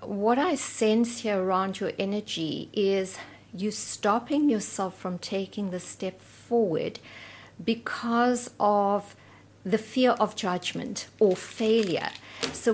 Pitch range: 195-240 Hz